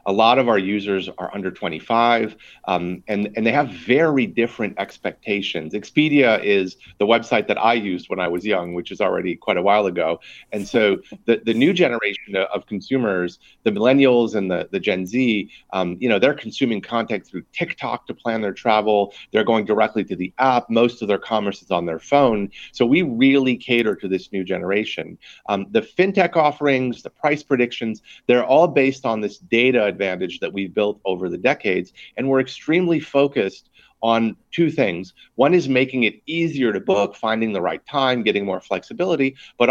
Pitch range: 100-135 Hz